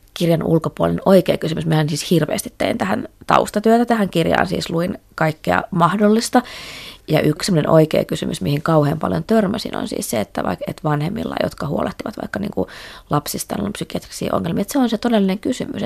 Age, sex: 20-39, female